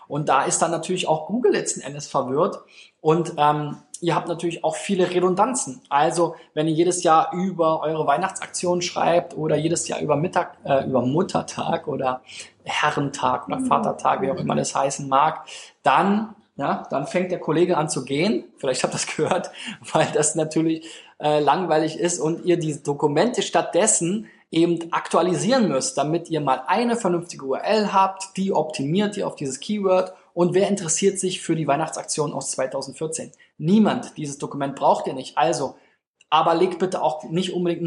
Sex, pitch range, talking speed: male, 140-175 Hz, 170 wpm